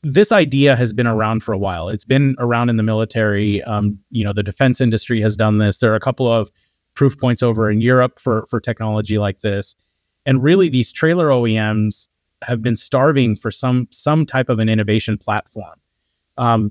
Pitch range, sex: 110-130 Hz, male